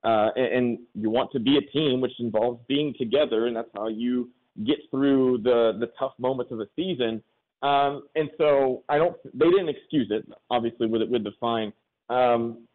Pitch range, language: 120-145 Hz, English